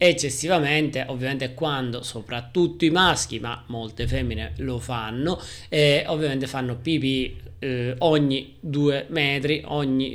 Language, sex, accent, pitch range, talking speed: Italian, male, native, 125-155 Hz, 125 wpm